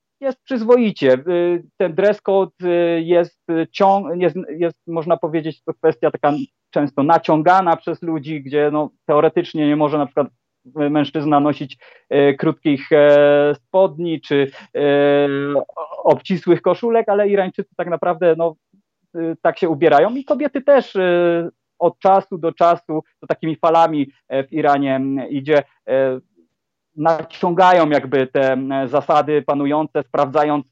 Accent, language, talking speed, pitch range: native, Polish, 130 wpm, 145-175 Hz